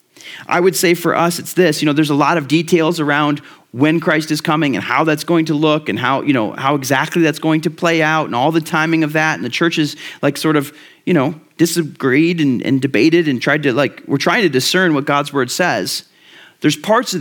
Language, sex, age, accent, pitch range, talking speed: English, male, 40-59, American, 145-170 Hz, 245 wpm